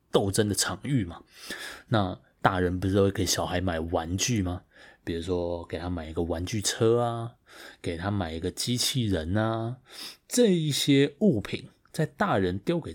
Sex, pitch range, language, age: male, 90-115 Hz, Chinese, 20-39